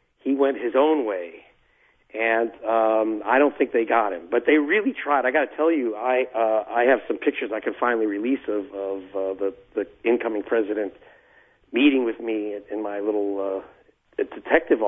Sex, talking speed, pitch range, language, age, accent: male, 190 wpm, 105-125 Hz, English, 40-59, American